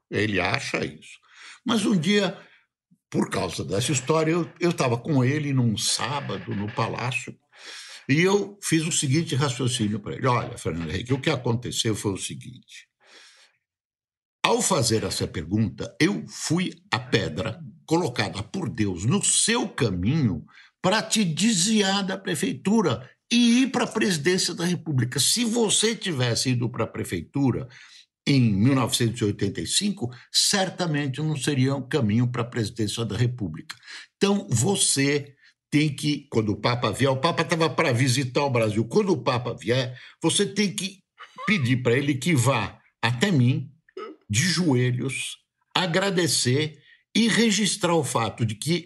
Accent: Brazilian